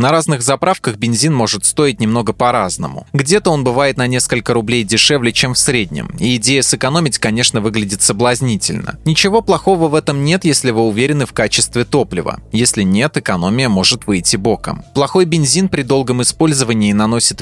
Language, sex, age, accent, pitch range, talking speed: Russian, male, 20-39, native, 110-140 Hz, 160 wpm